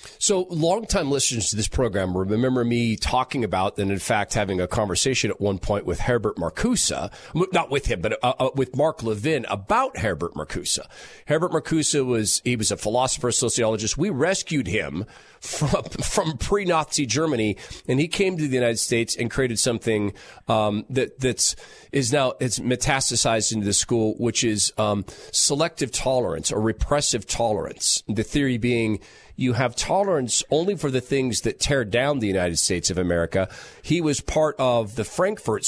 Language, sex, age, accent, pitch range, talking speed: English, male, 40-59, American, 110-140 Hz, 170 wpm